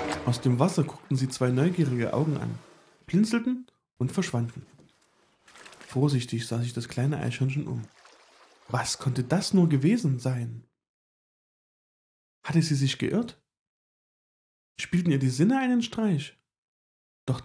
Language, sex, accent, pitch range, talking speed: German, male, German, 125-170 Hz, 125 wpm